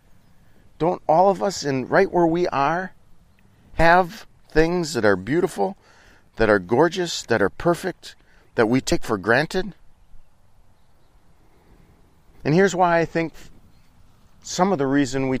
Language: English